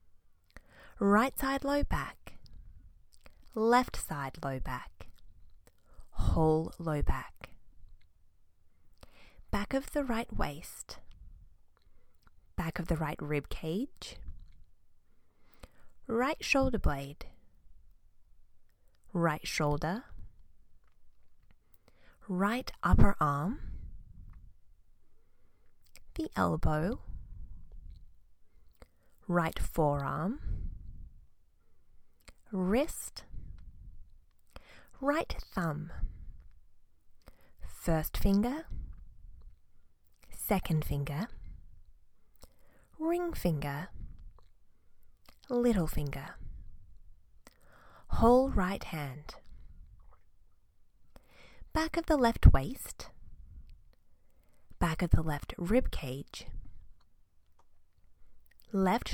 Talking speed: 60 wpm